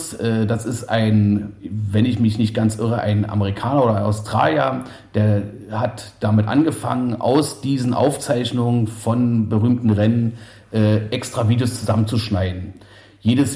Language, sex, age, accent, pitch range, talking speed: German, male, 40-59, German, 105-125 Hz, 130 wpm